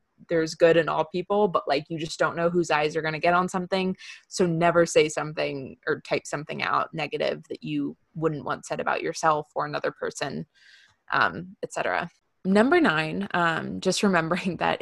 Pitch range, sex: 160-185 Hz, female